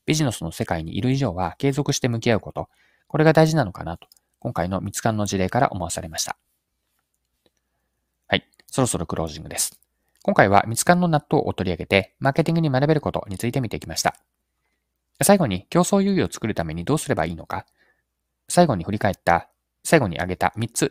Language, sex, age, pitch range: Japanese, male, 20-39, 90-140 Hz